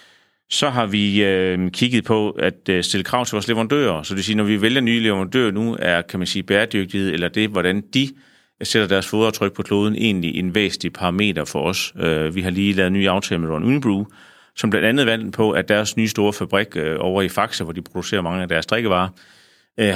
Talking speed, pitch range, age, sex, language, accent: 225 wpm, 95-110 Hz, 30-49, male, Danish, native